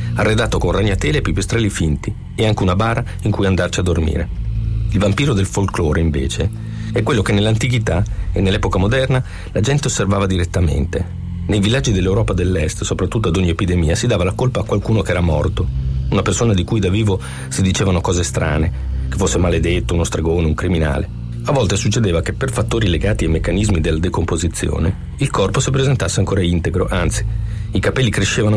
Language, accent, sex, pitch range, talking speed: Italian, native, male, 85-110 Hz, 180 wpm